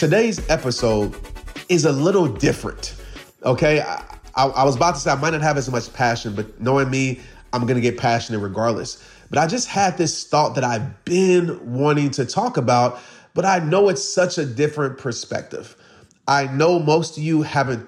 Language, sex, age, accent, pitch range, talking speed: English, male, 30-49, American, 130-170 Hz, 190 wpm